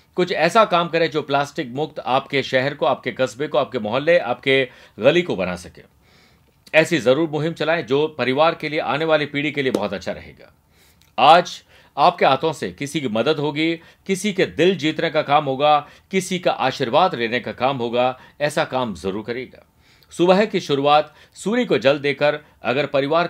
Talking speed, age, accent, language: 185 wpm, 50-69, native, Hindi